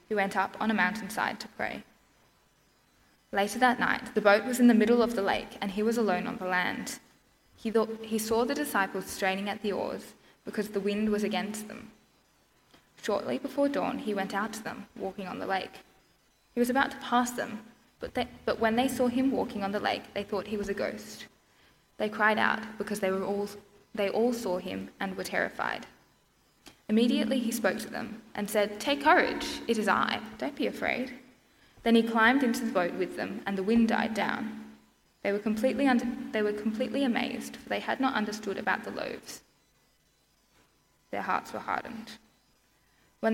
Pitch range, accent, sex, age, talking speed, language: 200-245 Hz, Australian, female, 10-29, 190 wpm, English